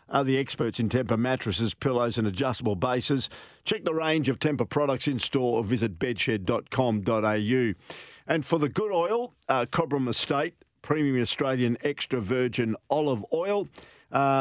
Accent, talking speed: Australian, 150 wpm